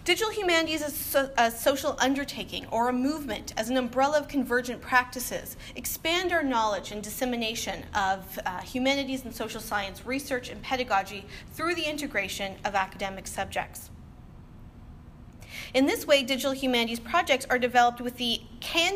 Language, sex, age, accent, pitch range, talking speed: English, female, 30-49, American, 215-275 Hz, 145 wpm